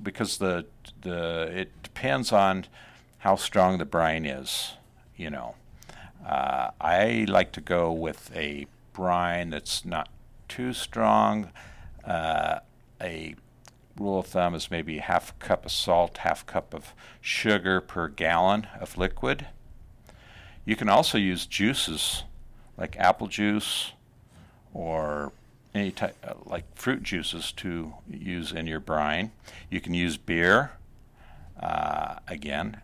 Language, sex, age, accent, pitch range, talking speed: English, male, 60-79, American, 80-105 Hz, 130 wpm